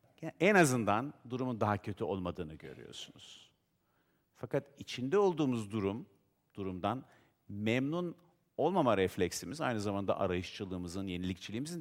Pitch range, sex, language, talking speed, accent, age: 100-140 Hz, male, Turkish, 95 wpm, native, 50-69